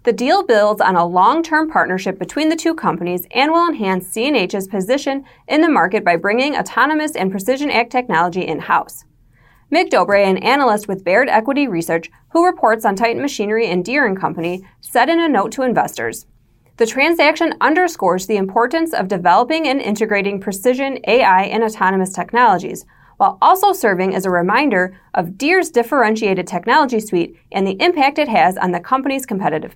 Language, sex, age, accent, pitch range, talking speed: English, female, 20-39, American, 185-285 Hz, 165 wpm